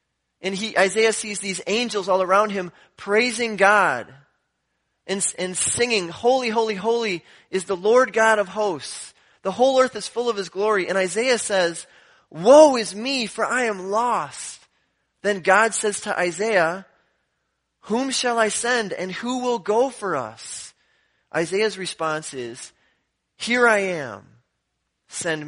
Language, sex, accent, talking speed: English, male, American, 150 wpm